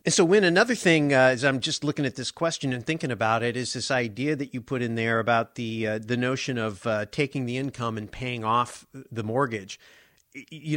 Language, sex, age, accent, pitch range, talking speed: English, male, 50-69, American, 110-140 Hz, 230 wpm